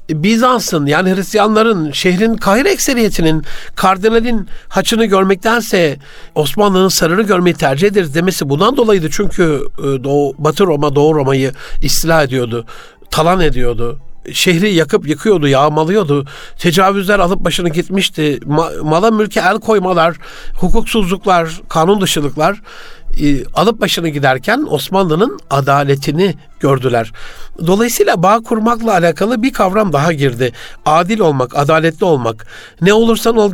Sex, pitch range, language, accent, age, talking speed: male, 155-205 Hz, Turkish, native, 60-79, 110 wpm